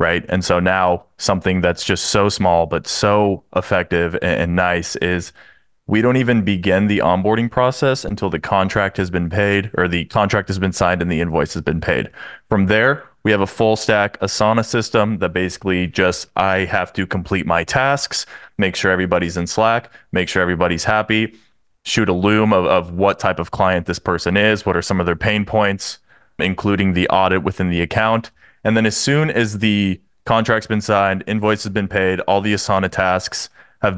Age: 20-39